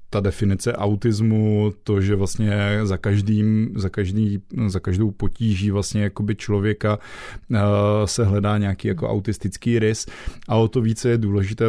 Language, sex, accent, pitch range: Czech, male, native, 100-105 Hz